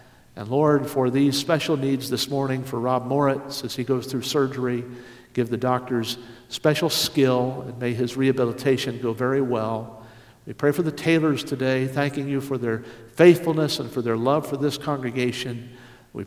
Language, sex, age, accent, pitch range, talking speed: English, male, 50-69, American, 120-145 Hz, 175 wpm